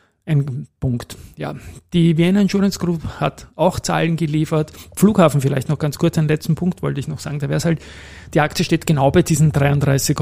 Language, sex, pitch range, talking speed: German, male, 125-150 Hz, 200 wpm